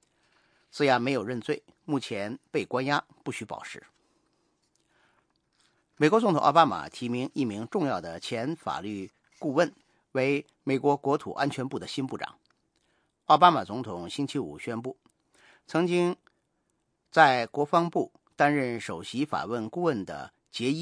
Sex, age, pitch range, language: male, 50-69, 125-155 Hz, English